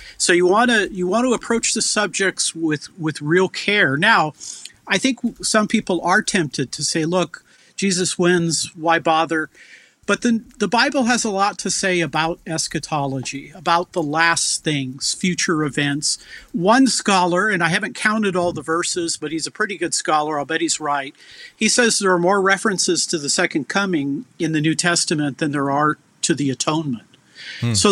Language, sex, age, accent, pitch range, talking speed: English, male, 50-69, American, 155-205 Hz, 185 wpm